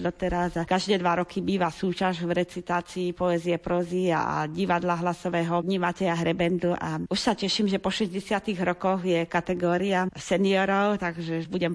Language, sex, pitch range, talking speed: Slovak, female, 170-200 Hz, 150 wpm